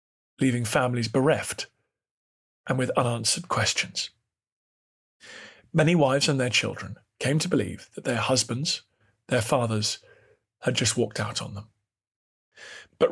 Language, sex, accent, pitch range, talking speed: English, male, British, 120-160 Hz, 125 wpm